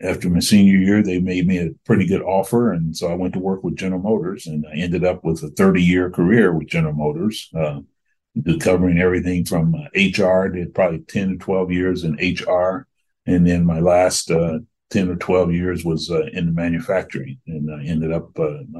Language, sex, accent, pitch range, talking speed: English, male, American, 80-90 Hz, 200 wpm